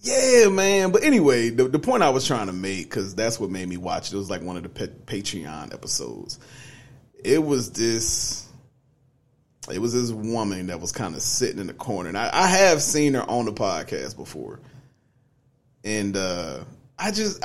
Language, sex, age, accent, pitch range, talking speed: English, male, 30-49, American, 110-155 Hz, 195 wpm